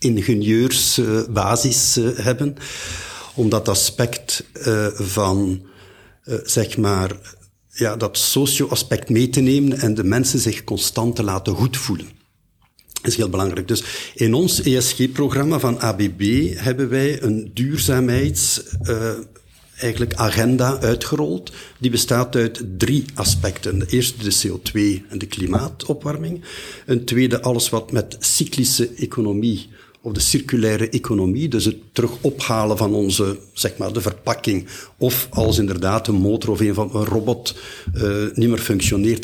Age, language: 60-79, Dutch